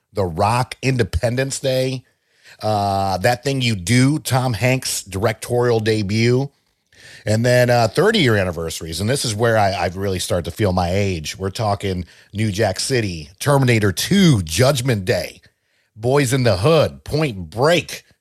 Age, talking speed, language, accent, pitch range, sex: 50-69, 150 wpm, English, American, 85-120 Hz, male